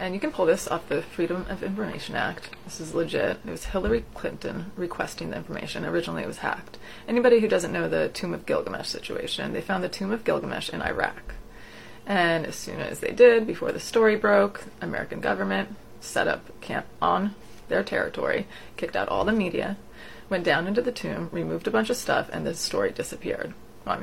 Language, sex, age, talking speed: English, female, 30-49, 200 wpm